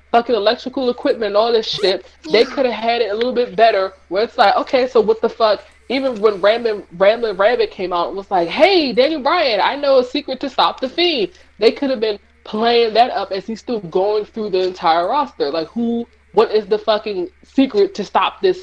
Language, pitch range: English, 200-290 Hz